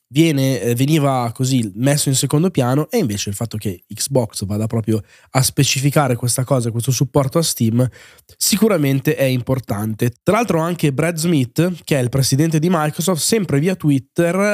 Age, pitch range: 20-39, 120-155 Hz